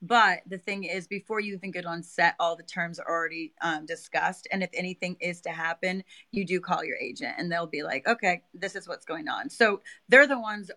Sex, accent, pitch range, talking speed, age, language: female, American, 170-190 Hz, 235 wpm, 30-49, English